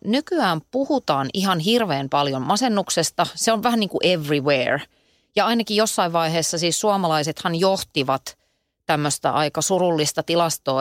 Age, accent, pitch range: 30-49, native, 145-210 Hz